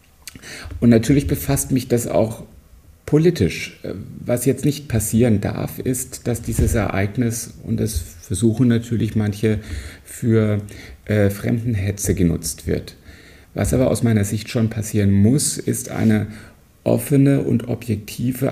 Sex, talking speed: male, 125 wpm